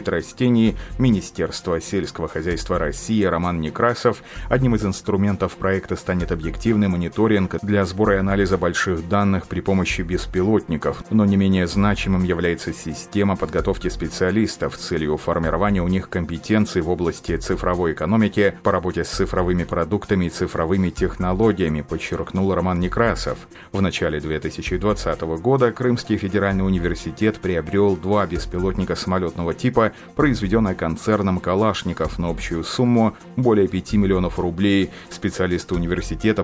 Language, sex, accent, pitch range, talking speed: Russian, male, native, 85-105 Hz, 125 wpm